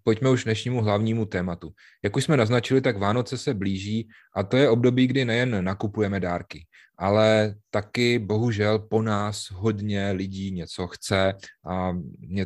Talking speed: 155 wpm